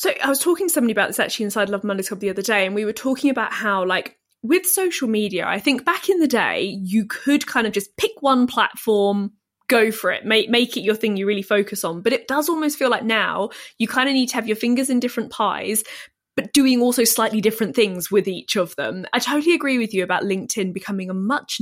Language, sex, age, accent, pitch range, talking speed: English, female, 20-39, British, 200-260 Hz, 250 wpm